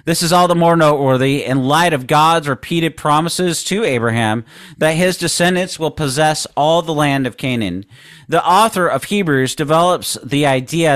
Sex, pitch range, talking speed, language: male, 135-170 Hz, 170 wpm, English